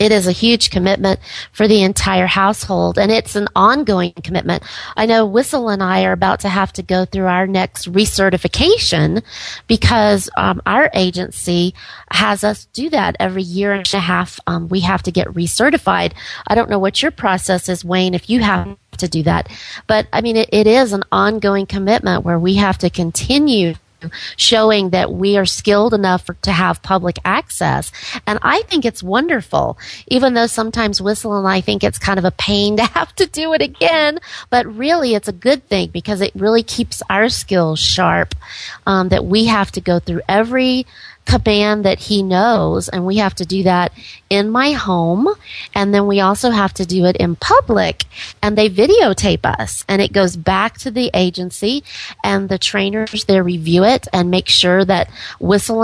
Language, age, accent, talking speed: English, 30-49, American, 190 wpm